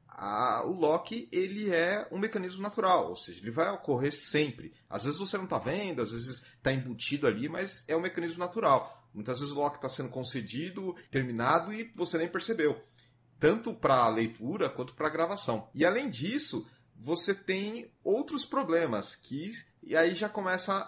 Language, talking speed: English, 180 wpm